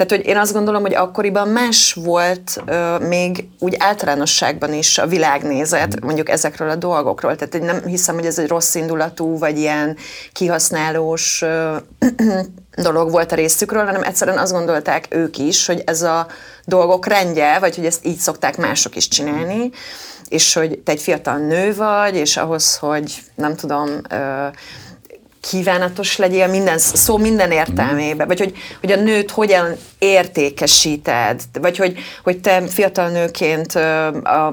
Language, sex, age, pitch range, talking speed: Hungarian, female, 30-49, 155-190 Hz, 150 wpm